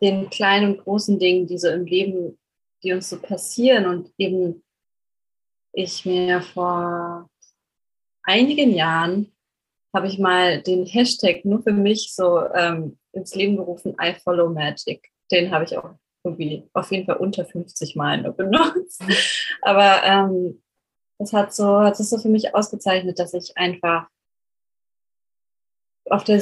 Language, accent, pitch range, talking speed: German, German, 180-205 Hz, 150 wpm